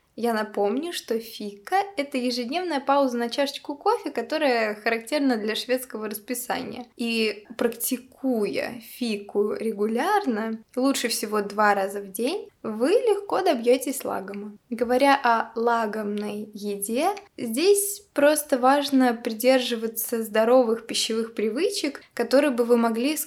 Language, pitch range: Russian, 220-275 Hz